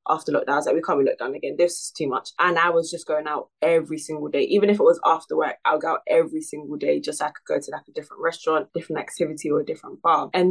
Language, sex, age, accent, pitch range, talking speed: English, female, 20-39, British, 150-205 Hz, 310 wpm